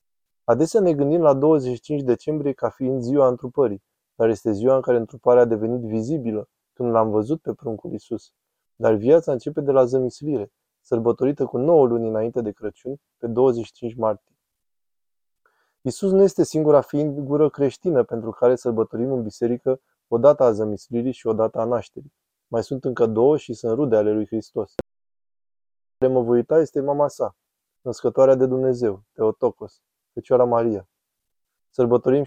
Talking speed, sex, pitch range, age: 155 wpm, male, 115-135 Hz, 20-39